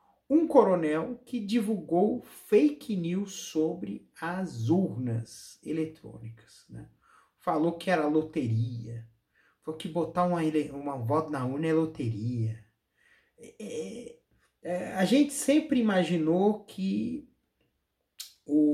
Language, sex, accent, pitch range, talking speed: Portuguese, male, Brazilian, 115-180 Hz, 110 wpm